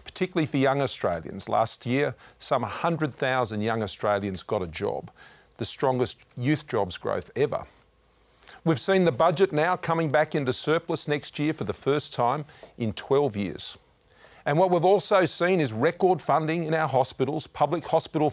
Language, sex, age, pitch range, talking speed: English, male, 50-69, 115-160 Hz, 165 wpm